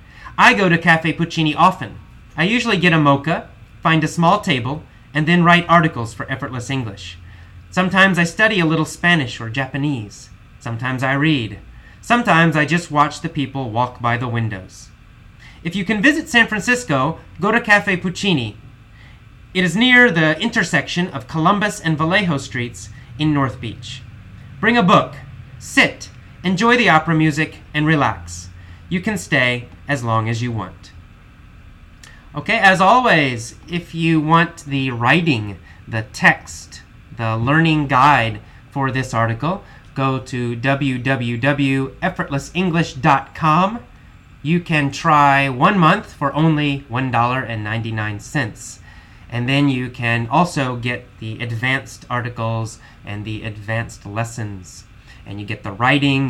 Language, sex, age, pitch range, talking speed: English, male, 30-49, 115-165 Hz, 145 wpm